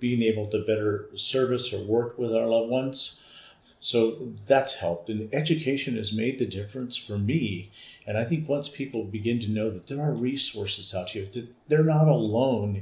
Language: English